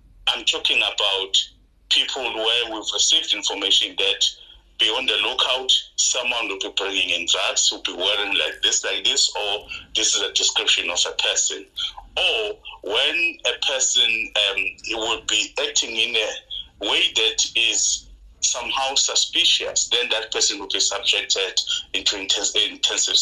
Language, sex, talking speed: English, male, 150 wpm